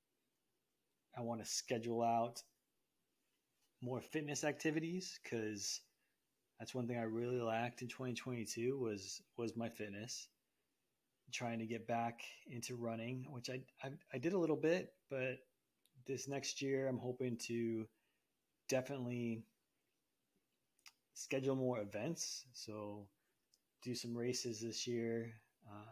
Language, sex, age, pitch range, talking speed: English, male, 30-49, 115-135 Hz, 125 wpm